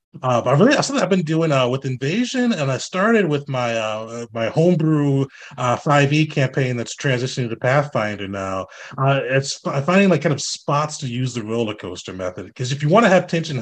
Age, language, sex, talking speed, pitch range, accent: 30-49, English, male, 205 wpm, 120-155 Hz, American